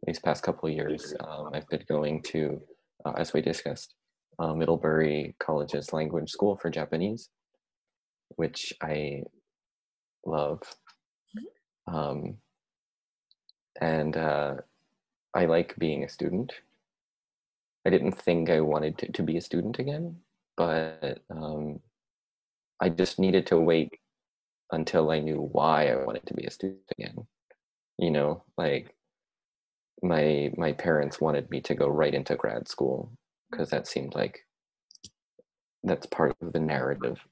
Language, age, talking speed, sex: English, 20-39, 135 wpm, male